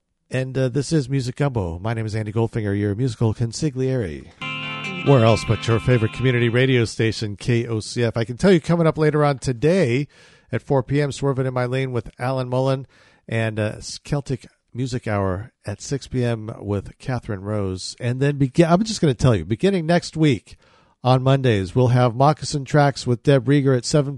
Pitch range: 110-145 Hz